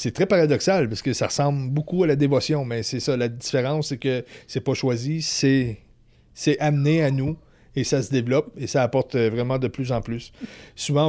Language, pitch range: French, 125-150 Hz